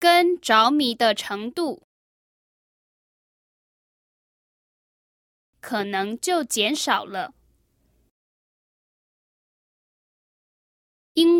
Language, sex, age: English, female, 20-39